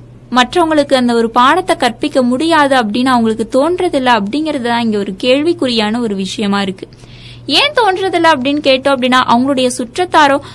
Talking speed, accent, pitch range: 125 wpm, native, 235-335 Hz